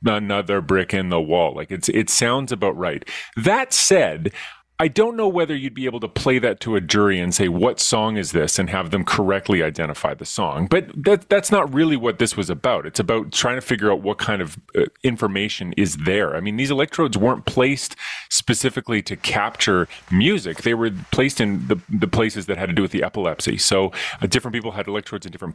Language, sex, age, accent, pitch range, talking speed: English, male, 30-49, American, 95-120 Hz, 220 wpm